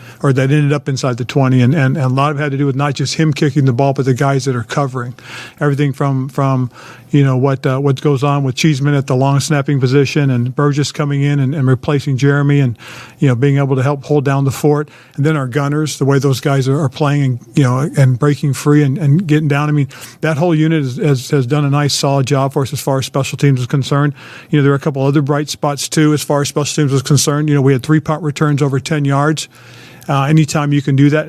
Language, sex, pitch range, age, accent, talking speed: English, male, 135-150 Hz, 50-69, American, 270 wpm